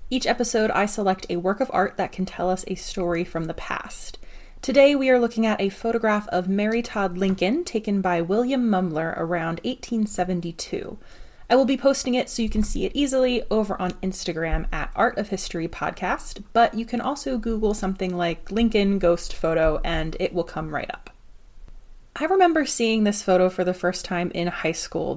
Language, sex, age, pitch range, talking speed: English, female, 20-39, 175-230 Hz, 195 wpm